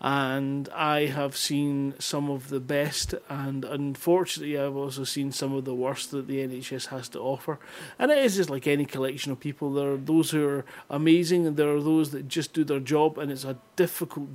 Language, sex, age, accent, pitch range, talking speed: English, male, 30-49, British, 135-155 Hz, 215 wpm